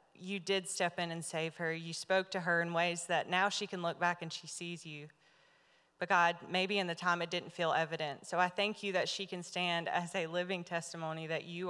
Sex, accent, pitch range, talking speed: female, American, 165-185 Hz, 240 wpm